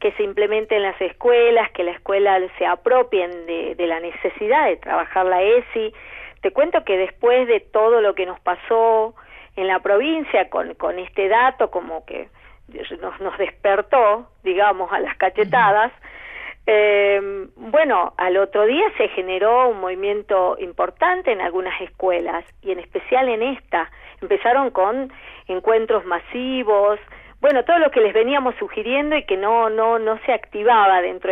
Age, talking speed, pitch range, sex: 40-59, 155 wpm, 185-260 Hz, female